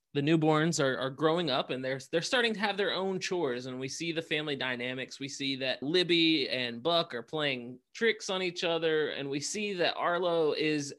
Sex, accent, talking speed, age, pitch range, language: male, American, 215 wpm, 20-39, 135-195 Hz, English